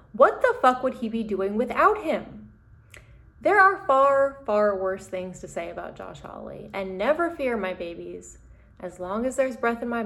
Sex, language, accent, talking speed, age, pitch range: female, English, American, 190 wpm, 20-39, 195-265 Hz